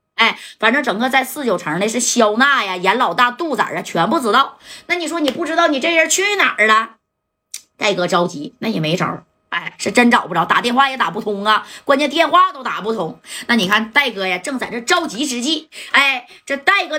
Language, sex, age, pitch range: Chinese, female, 20-39, 200-295 Hz